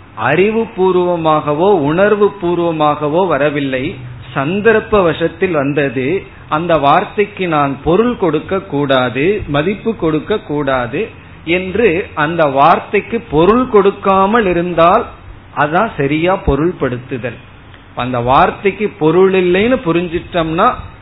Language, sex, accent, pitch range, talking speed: Tamil, male, native, 135-185 Hz, 90 wpm